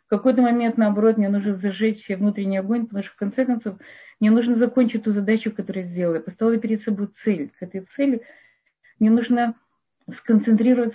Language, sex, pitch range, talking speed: Russian, female, 190-235 Hz, 180 wpm